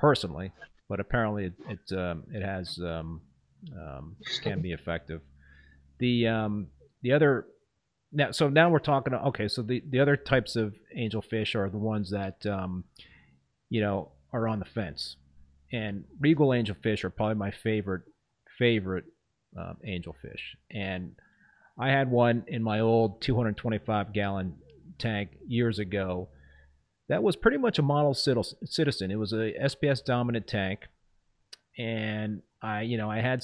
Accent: American